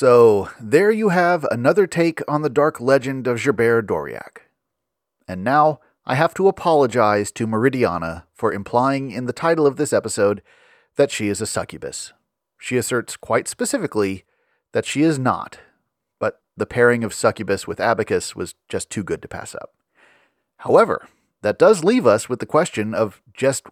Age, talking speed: 30-49, 165 wpm